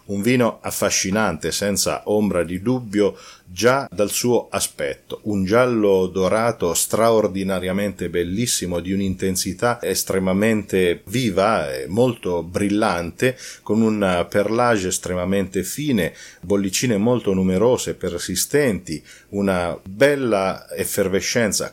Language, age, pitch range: Italian, 40-59, 90-110 Hz